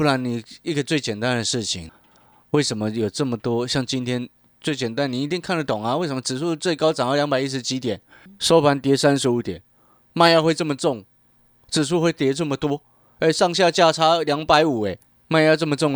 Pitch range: 100-135 Hz